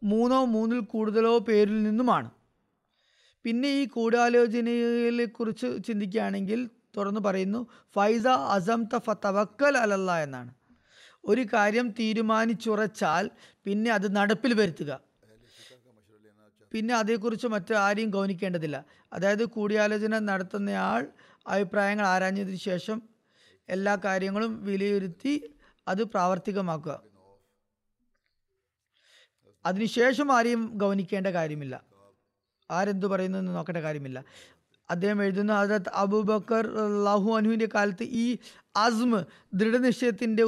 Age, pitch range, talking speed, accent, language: 20-39, 195-225 Hz, 85 wpm, native, Malayalam